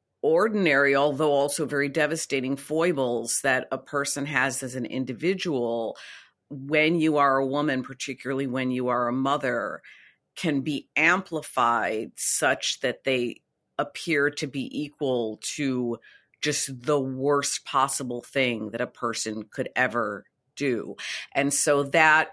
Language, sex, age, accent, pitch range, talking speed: English, female, 50-69, American, 125-150 Hz, 130 wpm